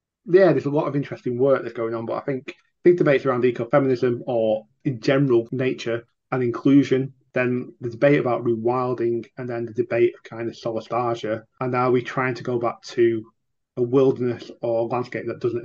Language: English